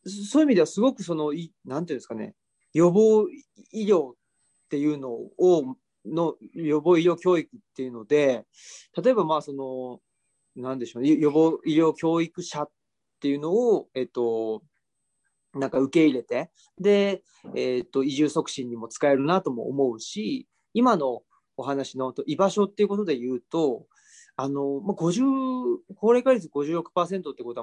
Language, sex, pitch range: Japanese, male, 130-205 Hz